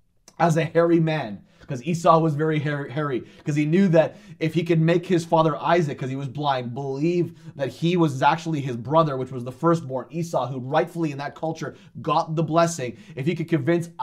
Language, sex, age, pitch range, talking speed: English, male, 20-39, 135-170 Hz, 210 wpm